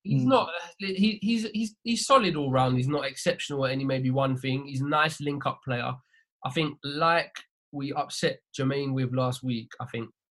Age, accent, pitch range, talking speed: 20-39, British, 115-145 Hz, 190 wpm